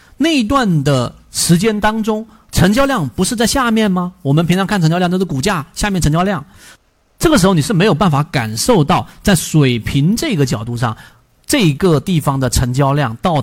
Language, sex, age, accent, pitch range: Chinese, male, 40-59, native, 135-195 Hz